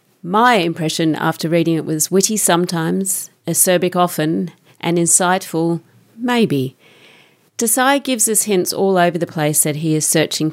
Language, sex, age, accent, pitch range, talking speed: English, female, 40-59, Australian, 155-185 Hz, 140 wpm